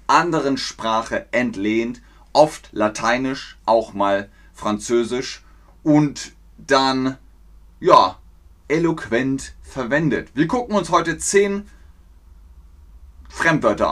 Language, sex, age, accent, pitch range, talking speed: German, male, 30-49, German, 95-150 Hz, 80 wpm